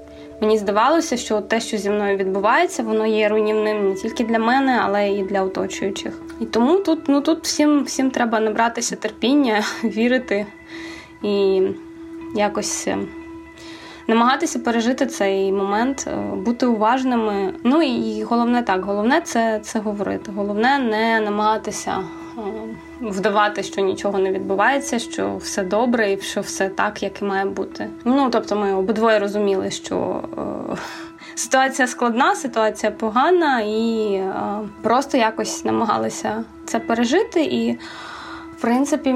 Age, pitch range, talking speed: 20-39, 200-270 Hz, 130 wpm